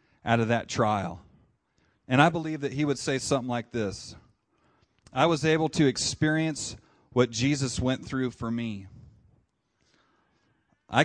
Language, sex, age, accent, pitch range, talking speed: English, male, 40-59, American, 120-150 Hz, 140 wpm